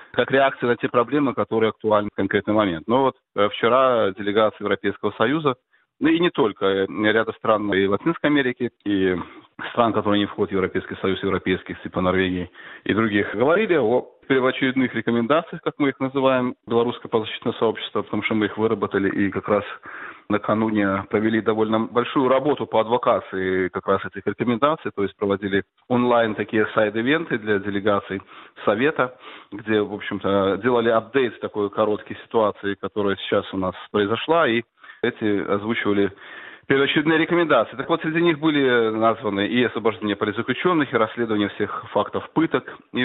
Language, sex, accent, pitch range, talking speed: Russian, male, native, 100-125 Hz, 155 wpm